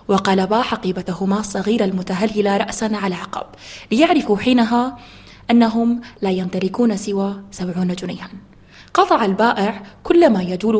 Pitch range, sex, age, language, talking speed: 195-235 Hz, female, 20-39, Arabic, 110 wpm